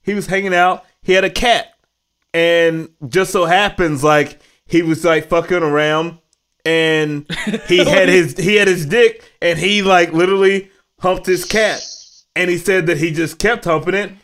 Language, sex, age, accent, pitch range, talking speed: English, male, 20-39, American, 155-190 Hz, 175 wpm